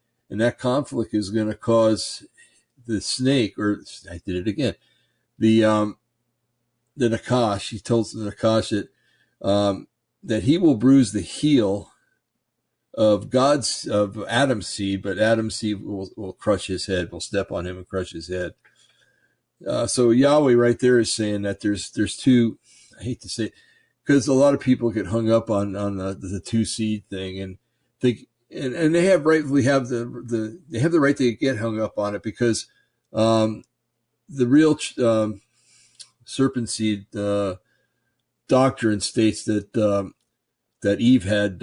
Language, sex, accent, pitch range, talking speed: English, male, American, 100-120 Hz, 170 wpm